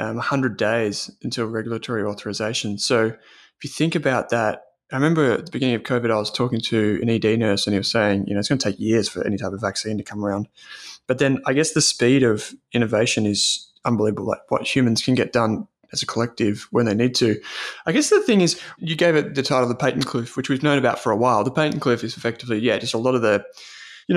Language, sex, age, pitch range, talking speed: English, male, 20-39, 110-140 Hz, 250 wpm